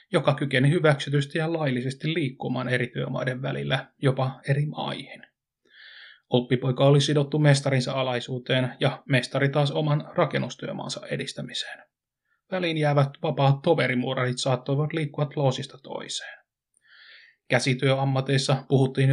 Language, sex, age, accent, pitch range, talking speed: Finnish, male, 30-49, native, 130-145 Hz, 100 wpm